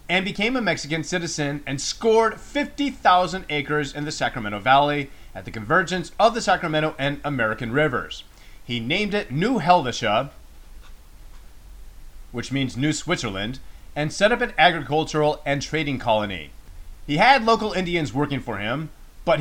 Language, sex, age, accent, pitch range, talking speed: English, male, 30-49, American, 120-180 Hz, 145 wpm